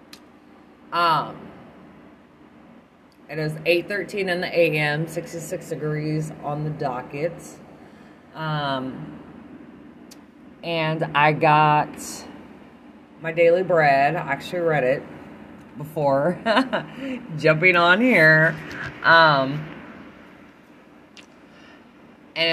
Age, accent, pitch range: 30-49, American, 150-200 Hz